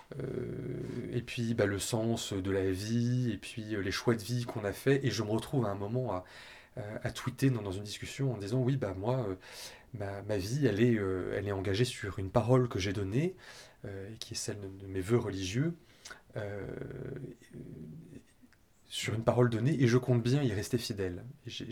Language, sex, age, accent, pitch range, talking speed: French, male, 30-49, French, 100-125 Hz, 215 wpm